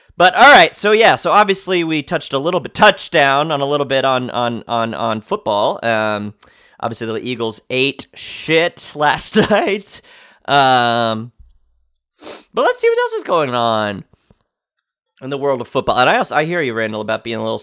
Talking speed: 185 wpm